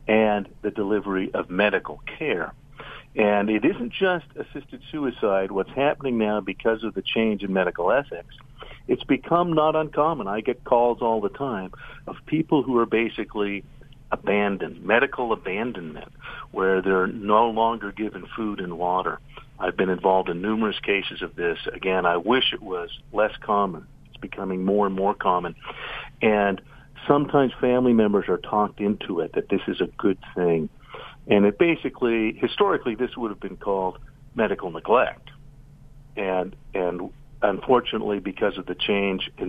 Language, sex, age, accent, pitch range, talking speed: English, male, 50-69, American, 100-135 Hz, 155 wpm